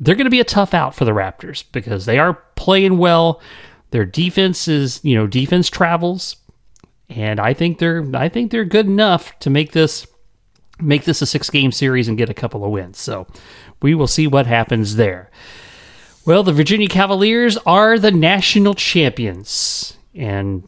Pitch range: 120-180 Hz